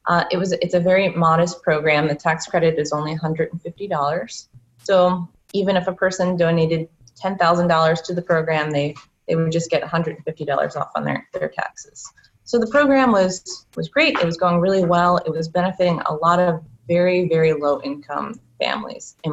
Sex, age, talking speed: female, 20-39, 175 wpm